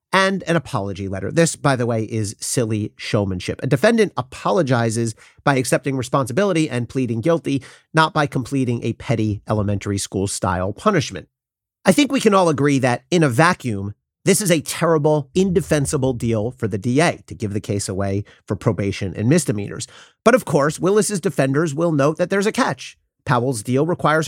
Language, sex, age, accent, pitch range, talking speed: English, male, 40-59, American, 115-175 Hz, 175 wpm